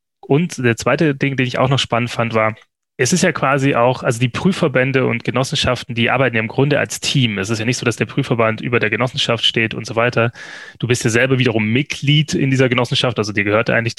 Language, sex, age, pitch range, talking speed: German, male, 20-39, 115-140 Hz, 240 wpm